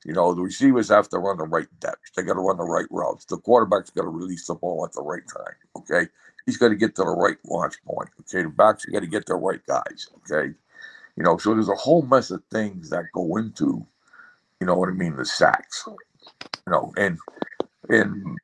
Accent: American